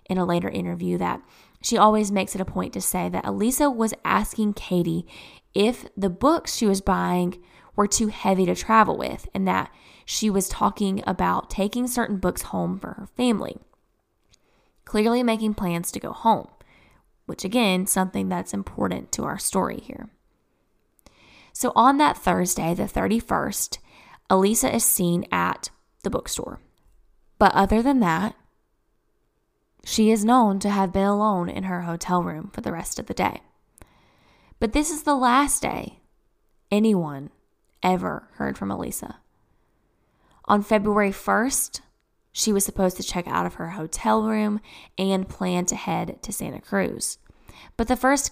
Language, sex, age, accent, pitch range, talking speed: English, female, 10-29, American, 180-220 Hz, 155 wpm